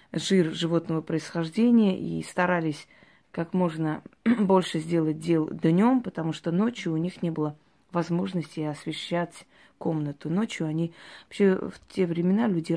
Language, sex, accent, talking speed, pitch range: Russian, female, native, 130 wpm, 155-185 Hz